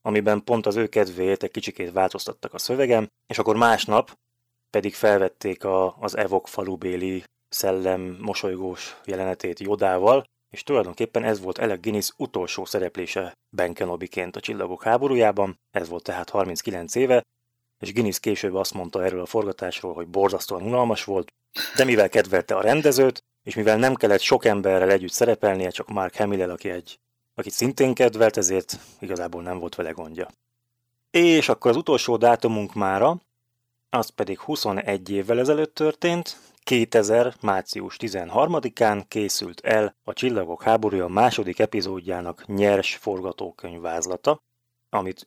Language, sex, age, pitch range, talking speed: Hungarian, male, 20-39, 95-120 Hz, 140 wpm